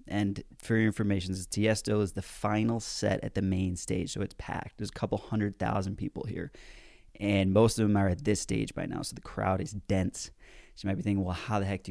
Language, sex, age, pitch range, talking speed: English, male, 30-49, 95-105 Hz, 240 wpm